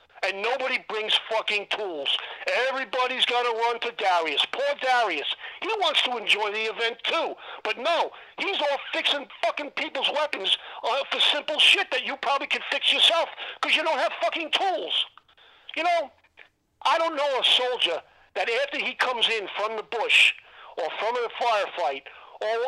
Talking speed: 165 wpm